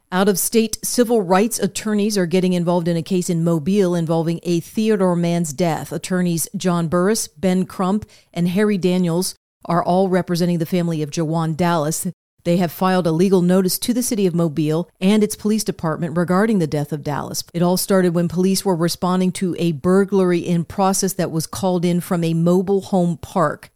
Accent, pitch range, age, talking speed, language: American, 170-190 Hz, 40-59, 185 wpm, English